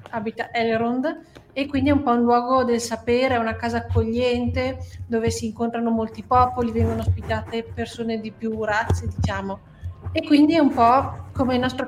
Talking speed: 170 wpm